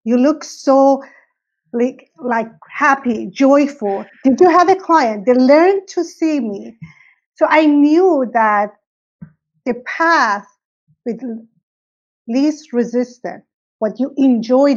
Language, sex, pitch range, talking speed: English, female, 220-295 Hz, 120 wpm